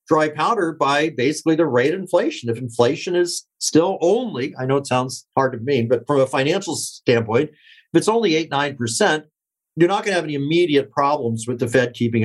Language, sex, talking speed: English, male, 205 wpm